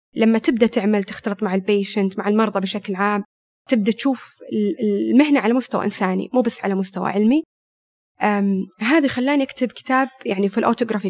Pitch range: 205-260 Hz